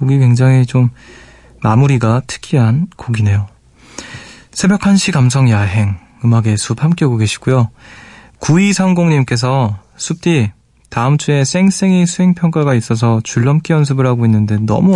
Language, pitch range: Korean, 115-165 Hz